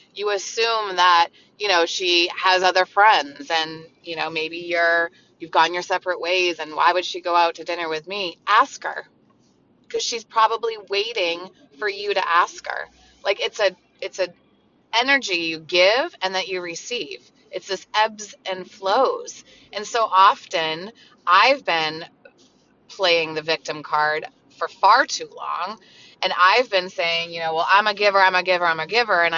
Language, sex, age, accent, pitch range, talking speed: English, female, 30-49, American, 170-205 Hz, 180 wpm